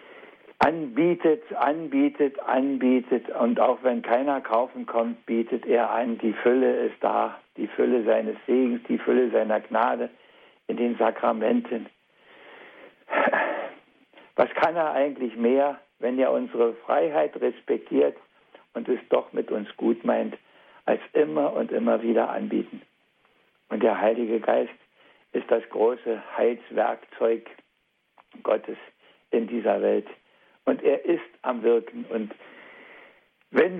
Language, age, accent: German, 60-79, German